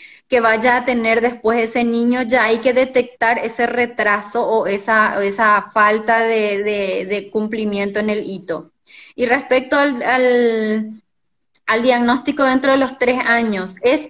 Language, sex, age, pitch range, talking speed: Spanish, female, 20-39, 205-235 Hz, 145 wpm